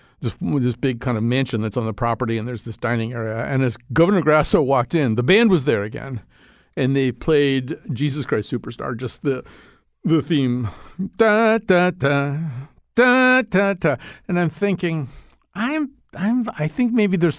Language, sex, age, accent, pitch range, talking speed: English, male, 50-69, American, 125-175 Hz, 175 wpm